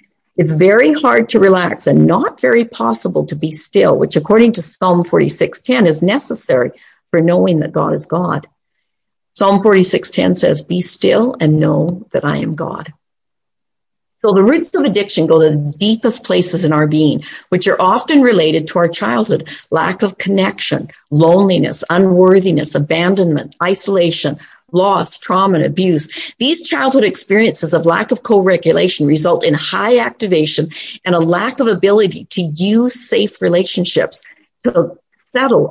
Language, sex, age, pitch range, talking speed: English, female, 50-69, 160-225 Hz, 150 wpm